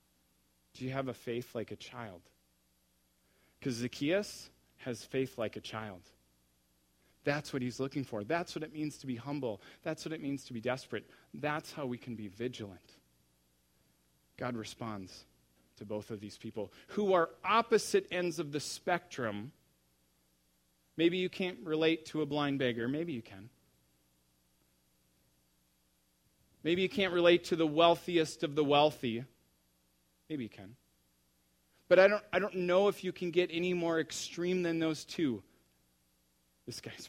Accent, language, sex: American, English, male